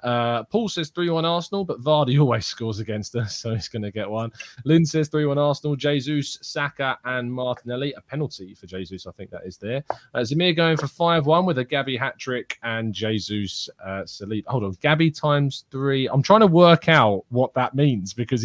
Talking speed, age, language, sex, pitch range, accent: 200 wpm, 20-39, English, male, 105-150 Hz, British